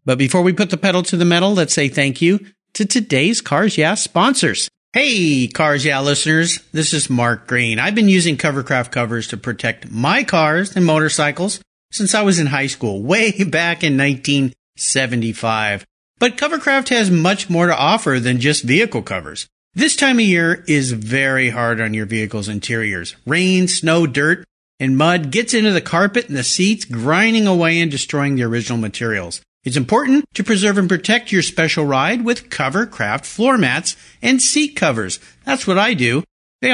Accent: American